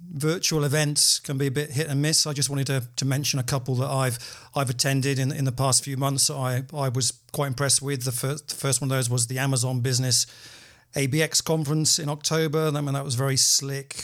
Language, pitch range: English, 125-145 Hz